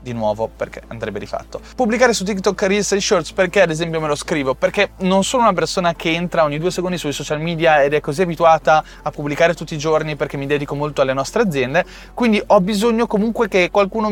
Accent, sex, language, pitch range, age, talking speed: native, male, Italian, 145-190 Hz, 20-39, 220 wpm